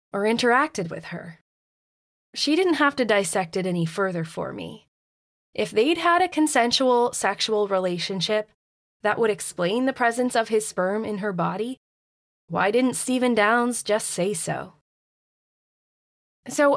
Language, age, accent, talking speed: English, 20-39, American, 145 wpm